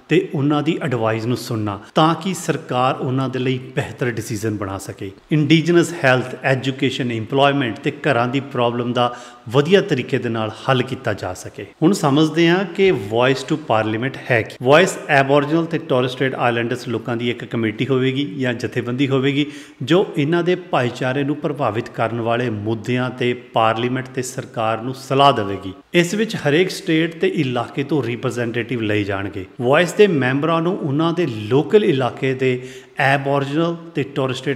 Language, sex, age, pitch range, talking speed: Punjabi, male, 30-49, 120-145 Hz, 150 wpm